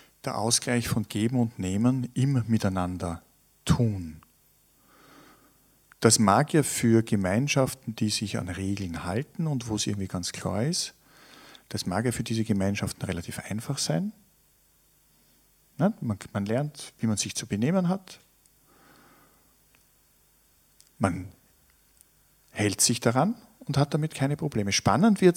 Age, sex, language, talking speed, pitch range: 50-69, male, German, 130 wpm, 105-155 Hz